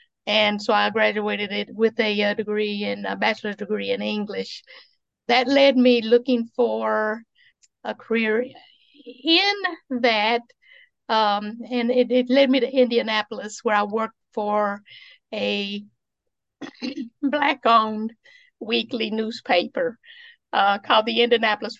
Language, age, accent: English, 50-69, American